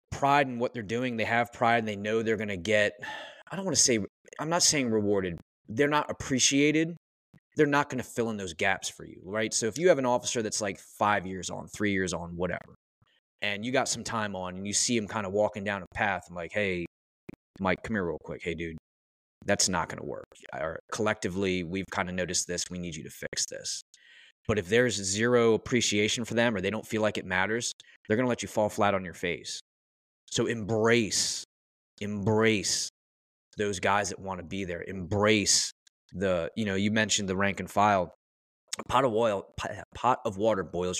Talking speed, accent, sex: 210 wpm, American, male